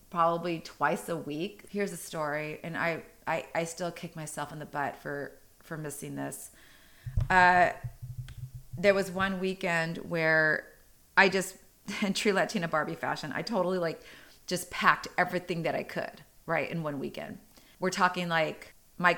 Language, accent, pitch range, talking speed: English, American, 150-180 Hz, 160 wpm